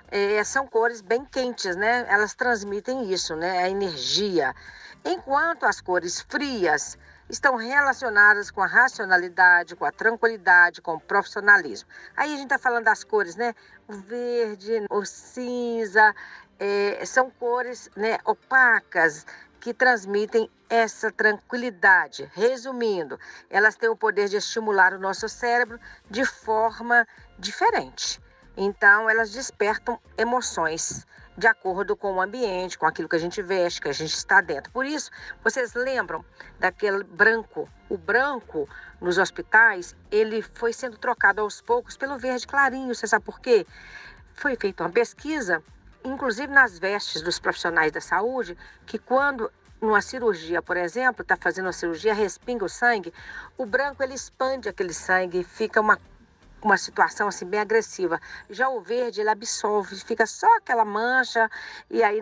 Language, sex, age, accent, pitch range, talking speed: Portuguese, female, 50-69, Brazilian, 200-255 Hz, 145 wpm